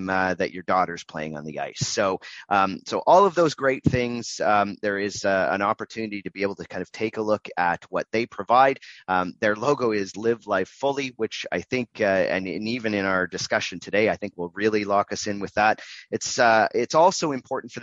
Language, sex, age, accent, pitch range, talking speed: English, male, 30-49, American, 100-135 Hz, 230 wpm